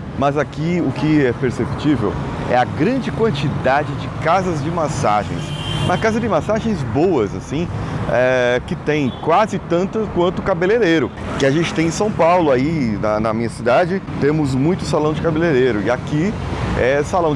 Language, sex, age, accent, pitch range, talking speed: Portuguese, male, 20-39, Brazilian, 115-155 Hz, 165 wpm